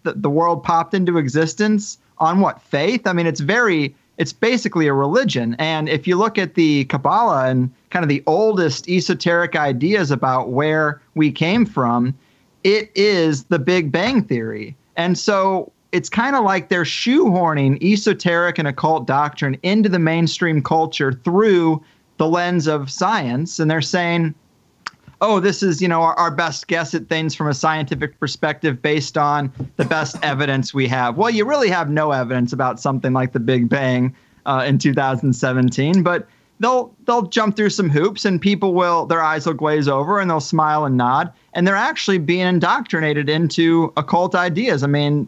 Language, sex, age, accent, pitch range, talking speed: English, male, 30-49, American, 145-185 Hz, 175 wpm